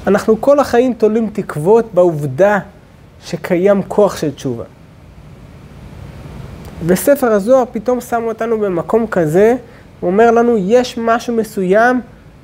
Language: Hebrew